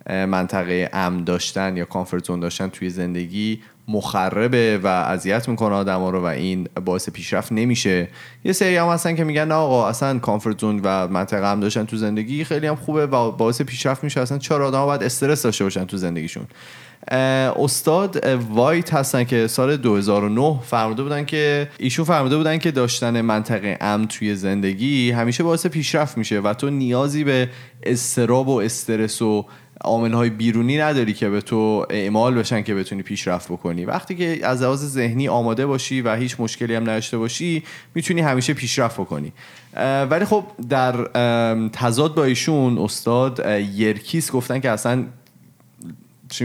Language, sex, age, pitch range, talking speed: Persian, male, 30-49, 105-135 Hz, 155 wpm